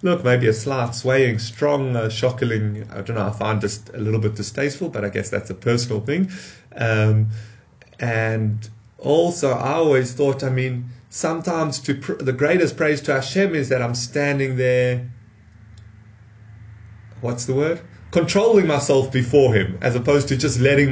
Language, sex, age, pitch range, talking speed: English, male, 30-49, 110-145 Hz, 165 wpm